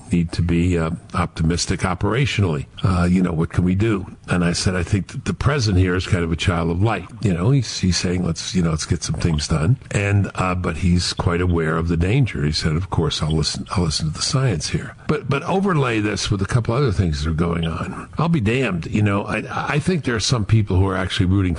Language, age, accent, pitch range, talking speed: English, 50-69, American, 85-115 Hz, 255 wpm